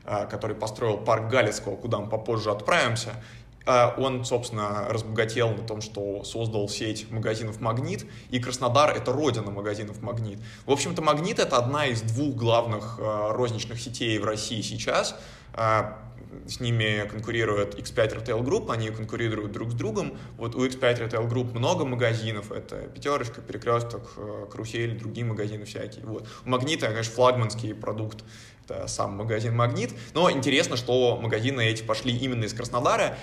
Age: 20-39